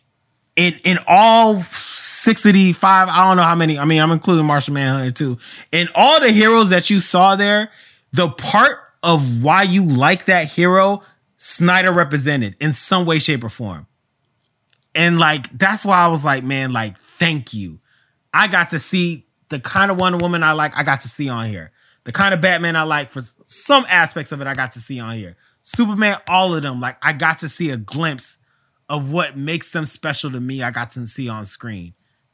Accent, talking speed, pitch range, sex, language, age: American, 200 wpm, 130-185 Hz, male, English, 20-39